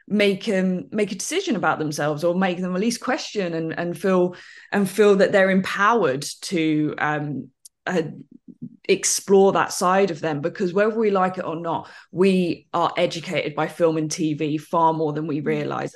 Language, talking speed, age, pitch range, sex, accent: English, 185 wpm, 20-39, 160-210 Hz, female, British